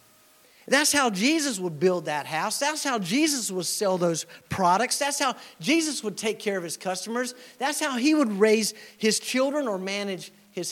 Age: 50-69